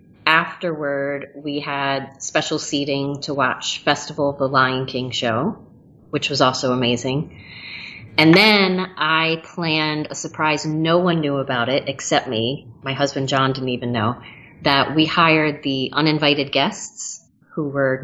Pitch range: 135-160 Hz